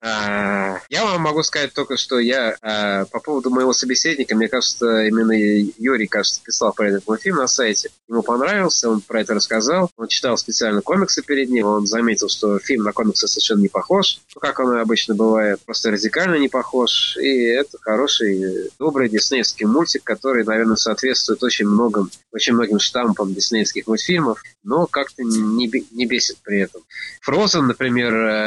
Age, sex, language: 20-39, male, Russian